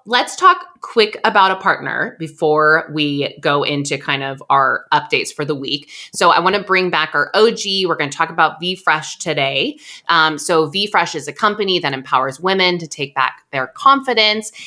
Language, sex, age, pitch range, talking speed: English, female, 20-39, 140-180 Hz, 190 wpm